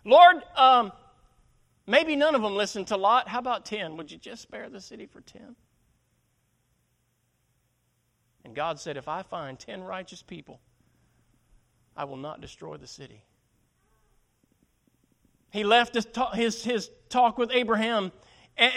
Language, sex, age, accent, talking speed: English, male, 40-59, American, 135 wpm